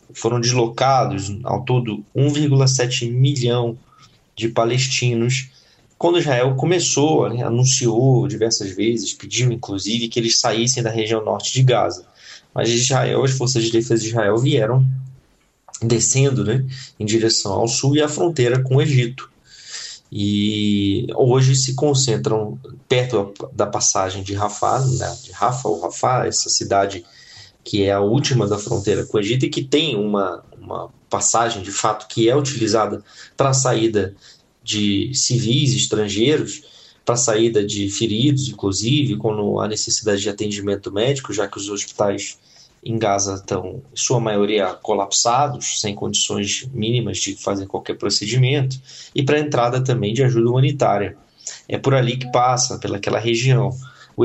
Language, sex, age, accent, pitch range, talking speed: Portuguese, male, 20-39, Brazilian, 105-130 Hz, 145 wpm